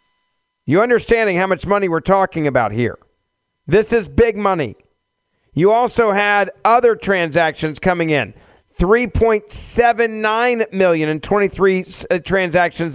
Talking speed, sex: 115 wpm, male